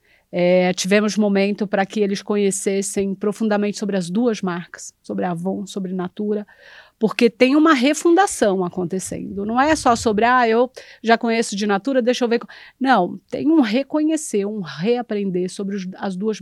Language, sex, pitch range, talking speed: Portuguese, female, 190-240 Hz, 155 wpm